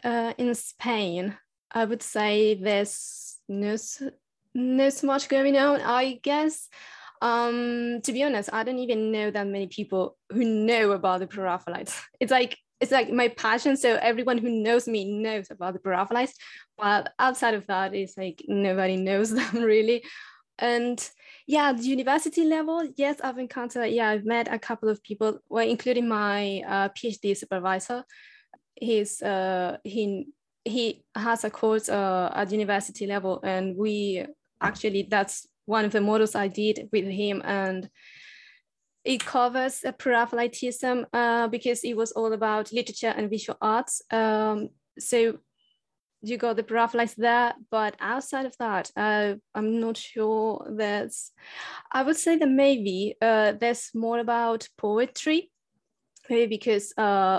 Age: 10-29